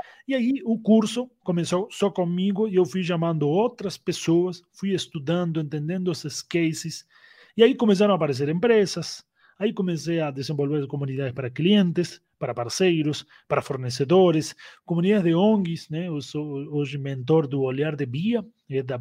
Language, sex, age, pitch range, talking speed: Portuguese, male, 30-49, 145-190 Hz, 155 wpm